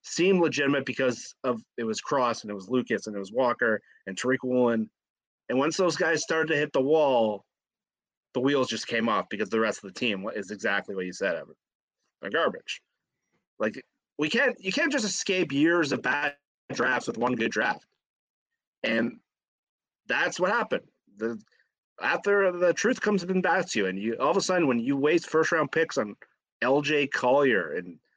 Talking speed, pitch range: 185 wpm, 125-185 Hz